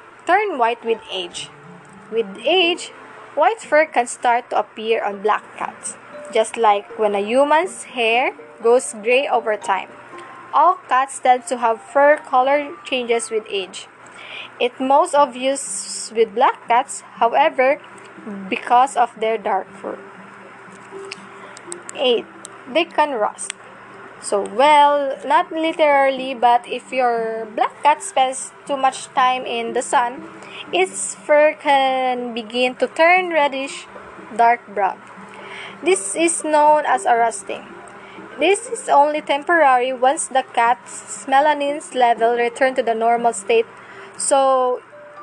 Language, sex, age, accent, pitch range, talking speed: English, female, 20-39, Filipino, 235-305 Hz, 130 wpm